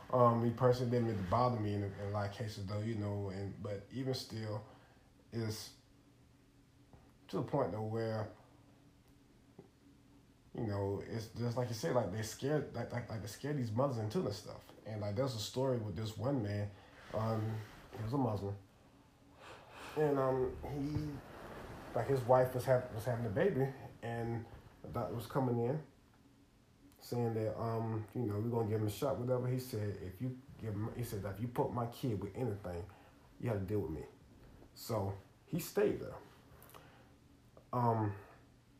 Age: 20-39